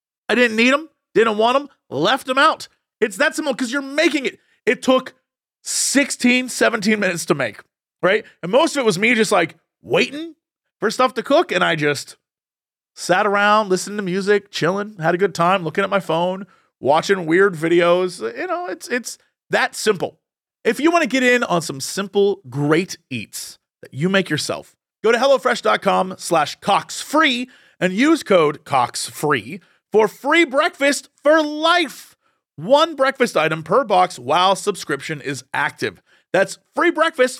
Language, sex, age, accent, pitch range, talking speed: English, male, 30-49, American, 175-270 Hz, 170 wpm